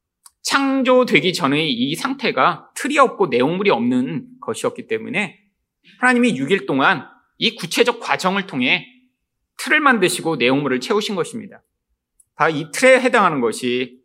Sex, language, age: male, Korean, 40-59